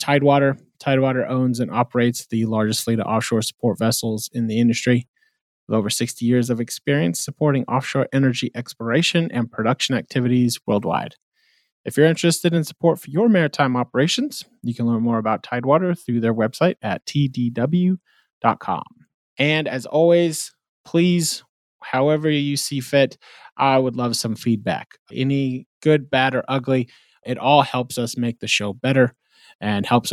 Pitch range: 115-150 Hz